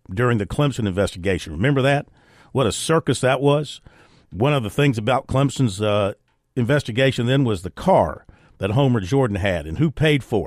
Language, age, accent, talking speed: English, 50-69, American, 180 wpm